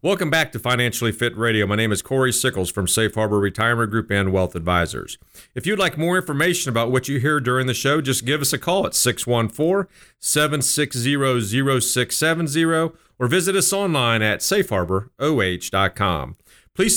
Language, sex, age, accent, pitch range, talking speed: English, male, 40-59, American, 110-150 Hz, 160 wpm